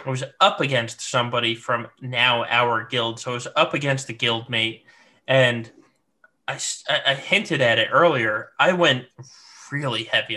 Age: 20-39